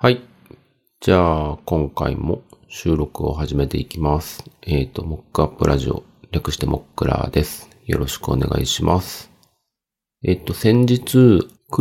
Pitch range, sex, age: 70-95 Hz, male, 40-59